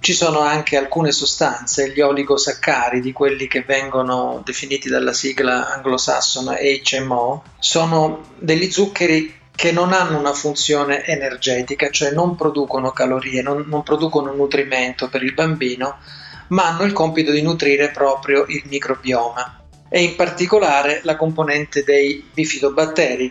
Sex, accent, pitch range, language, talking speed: male, native, 135-155 Hz, Italian, 135 wpm